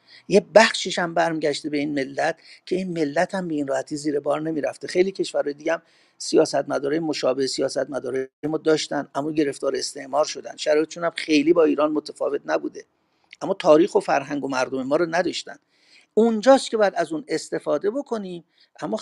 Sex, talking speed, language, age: male, 180 wpm, Persian, 50-69